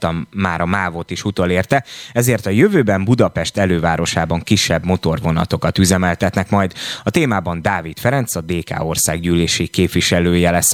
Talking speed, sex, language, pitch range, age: 135 wpm, male, Hungarian, 85-110 Hz, 20-39